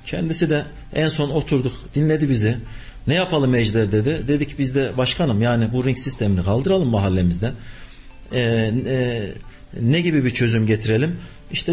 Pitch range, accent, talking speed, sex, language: 115-155 Hz, native, 145 wpm, male, Turkish